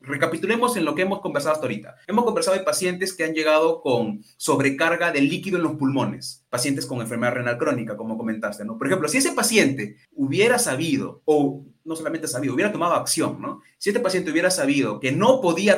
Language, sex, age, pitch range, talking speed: Spanish, male, 30-49, 125-180 Hz, 200 wpm